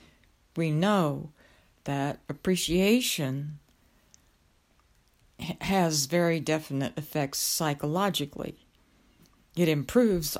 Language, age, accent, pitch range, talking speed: English, 60-79, American, 150-180 Hz, 65 wpm